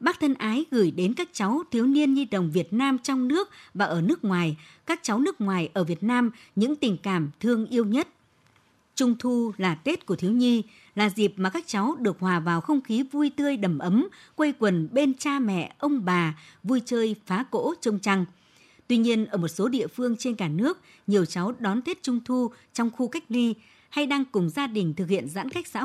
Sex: male